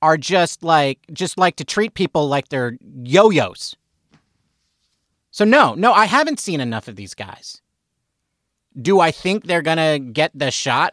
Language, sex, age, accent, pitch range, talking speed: English, male, 40-59, American, 120-185 Hz, 160 wpm